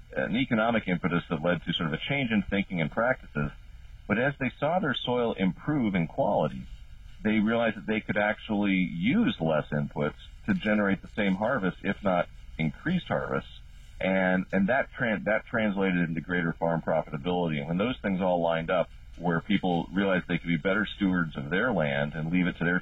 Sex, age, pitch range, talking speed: male, 40-59, 80-100 Hz, 190 wpm